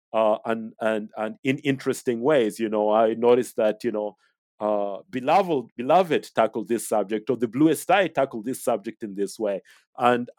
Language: English